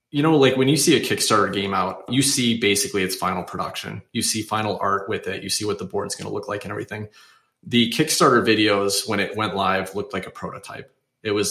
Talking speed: 240 wpm